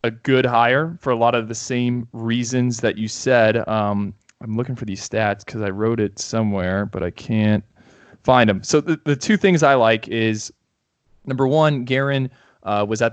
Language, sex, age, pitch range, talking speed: English, male, 20-39, 105-120 Hz, 190 wpm